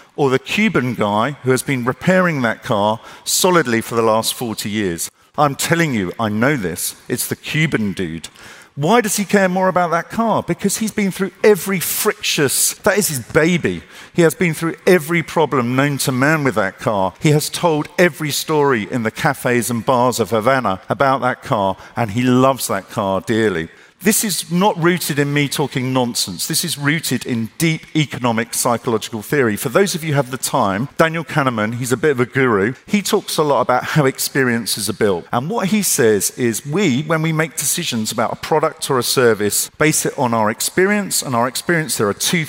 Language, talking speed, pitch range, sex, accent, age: Italian, 205 wpm, 115-165 Hz, male, British, 50-69